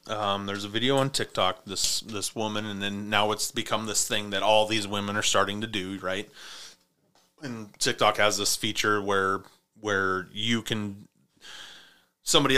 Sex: male